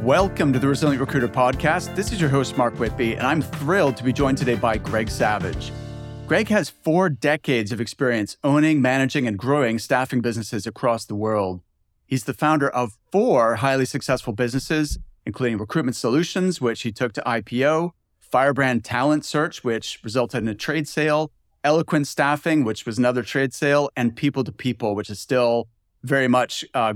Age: 30-49